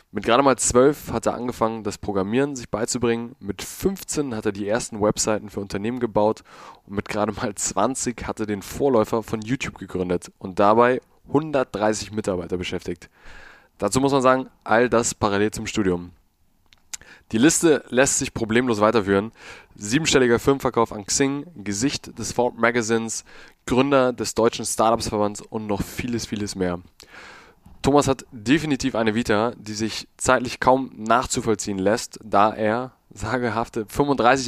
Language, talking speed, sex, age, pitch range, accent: German, 150 wpm, male, 20-39, 105-125 Hz, German